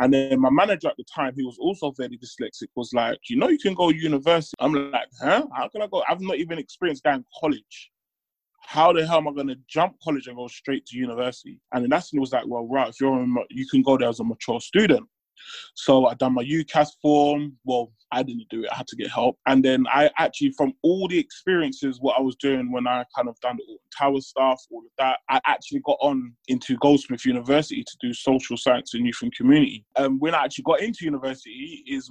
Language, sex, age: English, male, 20-39